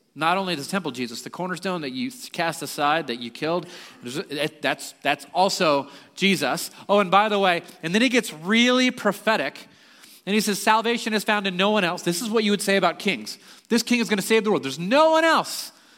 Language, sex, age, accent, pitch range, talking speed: English, male, 30-49, American, 165-235 Hz, 220 wpm